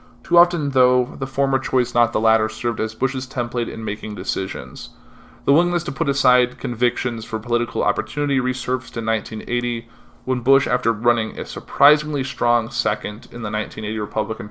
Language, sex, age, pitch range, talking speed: English, male, 20-39, 115-130 Hz, 165 wpm